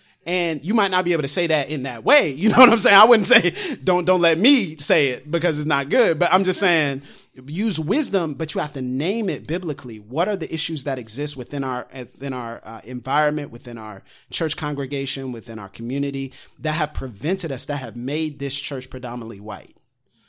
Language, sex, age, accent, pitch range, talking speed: English, male, 30-49, American, 130-170 Hz, 215 wpm